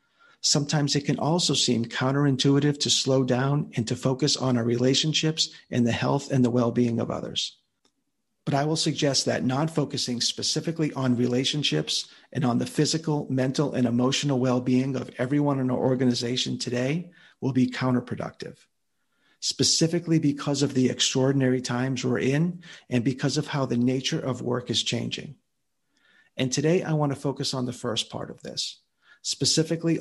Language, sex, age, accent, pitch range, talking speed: English, male, 50-69, American, 125-145 Hz, 160 wpm